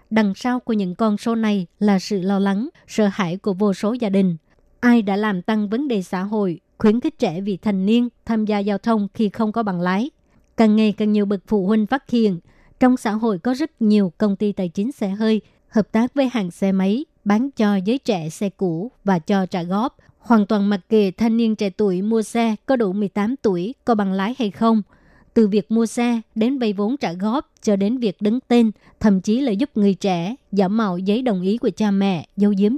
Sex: male